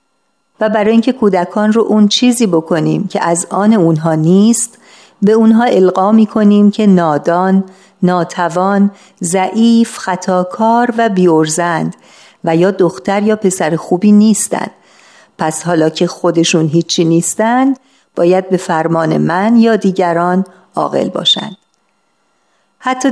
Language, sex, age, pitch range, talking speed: Persian, female, 50-69, 175-215 Hz, 120 wpm